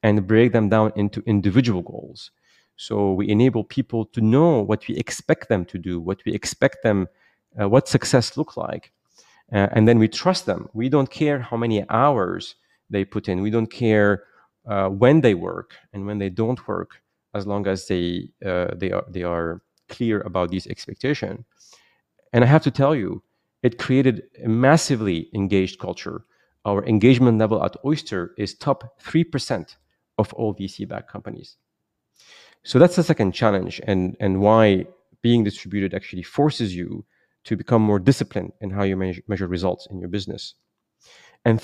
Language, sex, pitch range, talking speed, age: English, male, 100-125 Hz, 170 wpm, 40-59